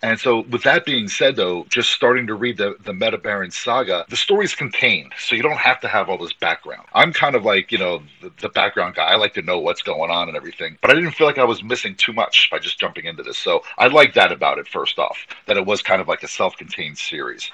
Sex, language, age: male, English, 40-59